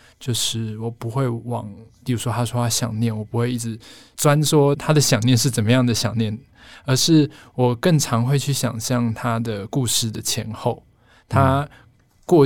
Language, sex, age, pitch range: Chinese, male, 20-39, 115-130 Hz